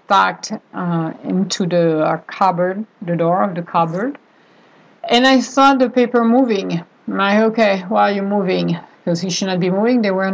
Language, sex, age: English, female, 50-69